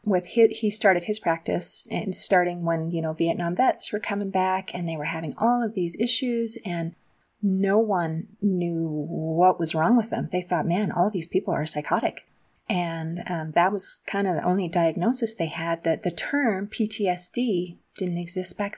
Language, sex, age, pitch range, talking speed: English, female, 30-49, 170-200 Hz, 190 wpm